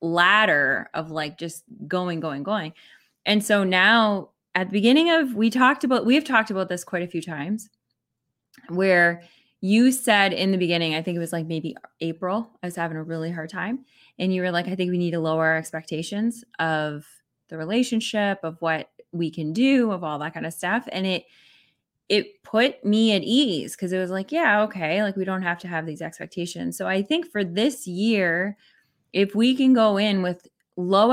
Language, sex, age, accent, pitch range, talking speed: English, female, 20-39, American, 170-220 Hz, 205 wpm